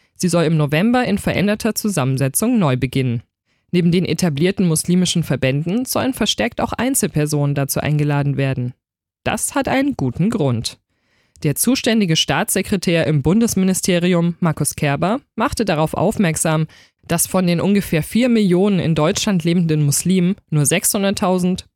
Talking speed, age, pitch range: 130 wpm, 20-39, 150-205 Hz